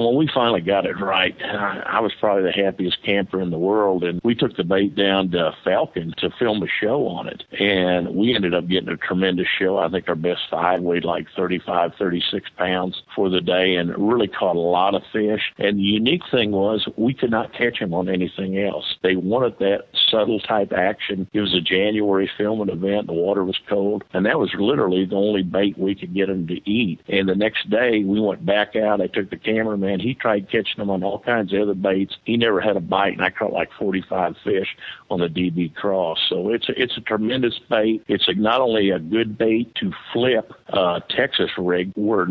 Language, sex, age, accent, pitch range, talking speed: English, male, 50-69, American, 90-105 Hz, 220 wpm